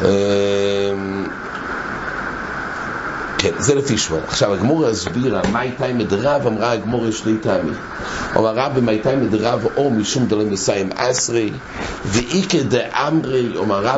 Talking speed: 125 wpm